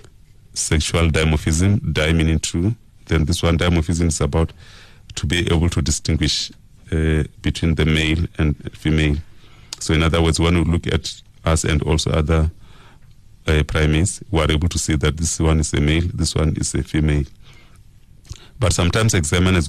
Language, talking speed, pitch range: English, 170 wpm, 80-105 Hz